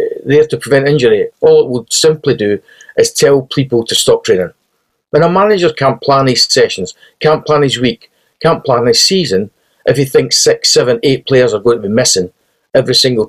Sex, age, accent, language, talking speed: male, 40-59, British, English, 200 wpm